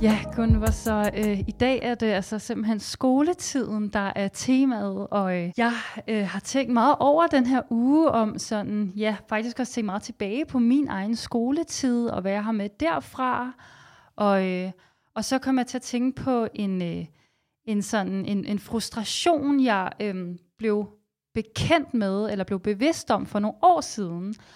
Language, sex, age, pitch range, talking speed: Danish, female, 30-49, 205-250 Hz, 180 wpm